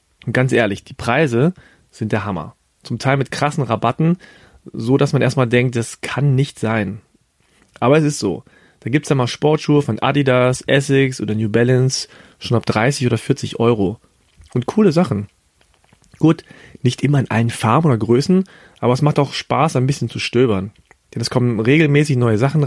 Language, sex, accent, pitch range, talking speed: German, male, German, 110-140 Hz, 185 wpm